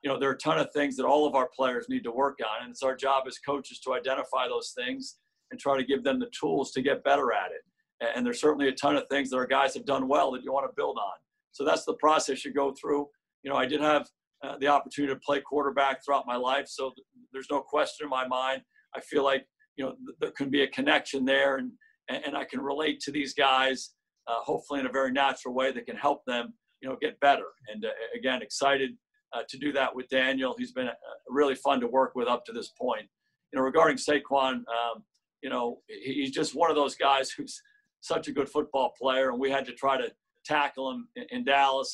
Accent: American